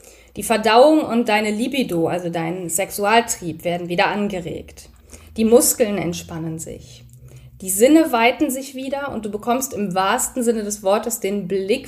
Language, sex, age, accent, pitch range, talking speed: German, female, 20-39, German, 180-240 Hz, 150 wpm